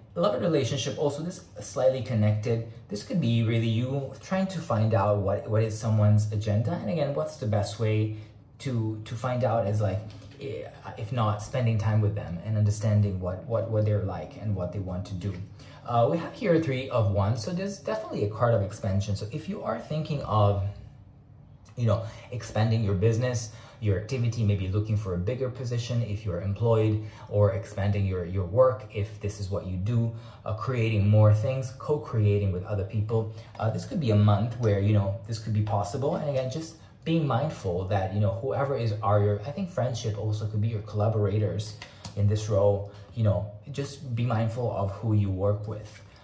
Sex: male